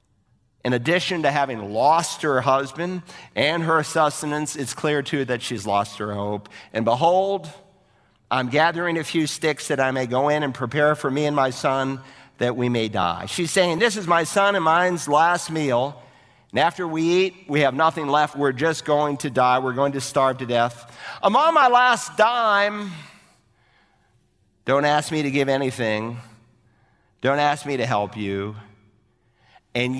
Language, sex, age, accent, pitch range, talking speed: English, male, 50-69, American, 125-165 Hz, 175 wpm